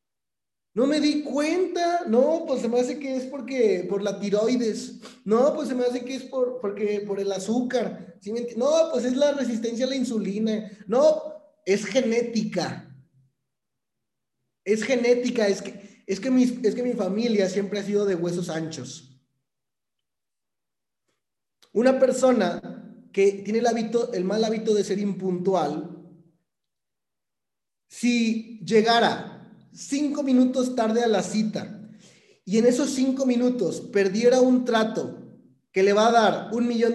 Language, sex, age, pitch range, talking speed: Spanish, male, 30-49, 195-245 Hz, 135 wpm